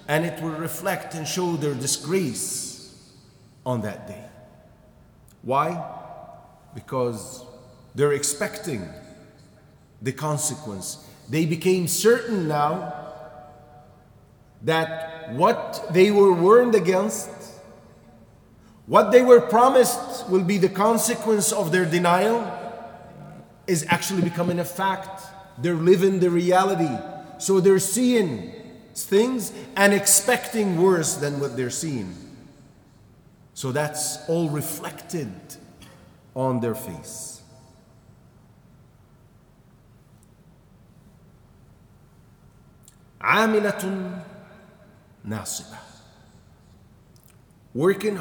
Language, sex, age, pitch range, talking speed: English, male, 40-59, 140-195 Hz, 85 wpm